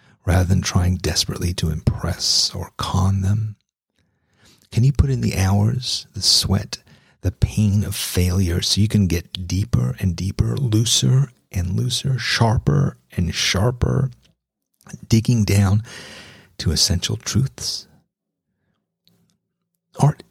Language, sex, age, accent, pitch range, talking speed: English, male, 40-59, American, 90-115 Hz, 120 wpm